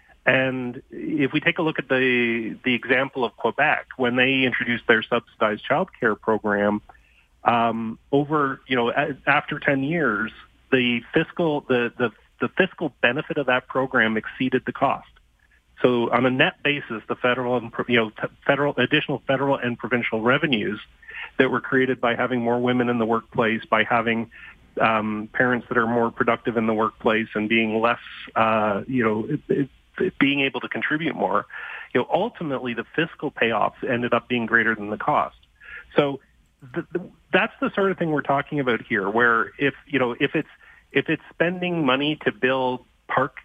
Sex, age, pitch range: male, 40-59, 115-140 Hz